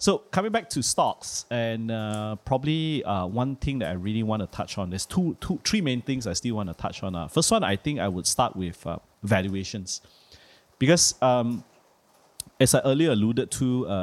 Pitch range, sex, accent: 95-120 Hz, male, Malaysian